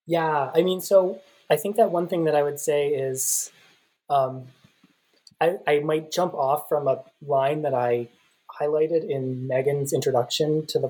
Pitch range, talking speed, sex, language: 130-185 Hz, 170 wpm, male, English